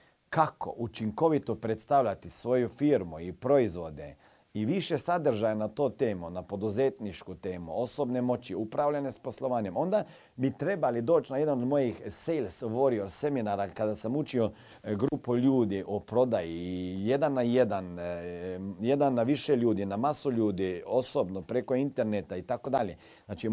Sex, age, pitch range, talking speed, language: male, 40-59, 100-130 Hz, 145 wpm, Croatian